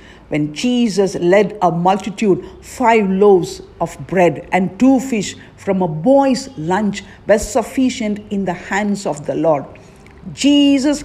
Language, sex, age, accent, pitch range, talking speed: English, female, 50-69, Indian, 185-245 Hz, 135 wpm